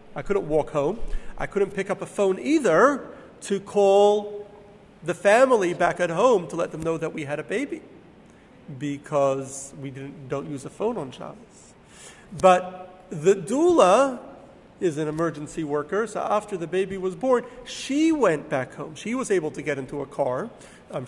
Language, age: English, 40-59